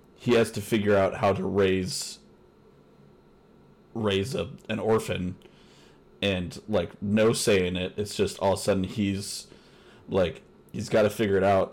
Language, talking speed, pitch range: English, 165 wpm, 90-105 Hz